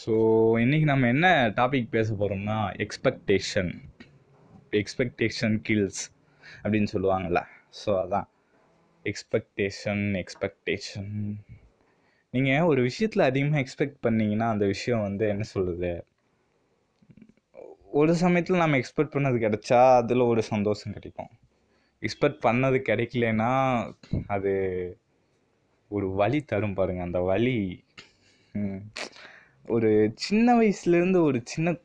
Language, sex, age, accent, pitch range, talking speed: Tamil, male, 20-39, native, 100-130 Hz, 100 wpm